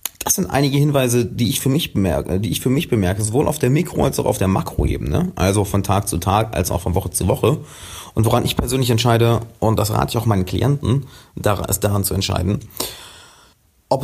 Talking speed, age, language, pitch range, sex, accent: 215 wpm, 30-49, German, 100-120 Hz, male, German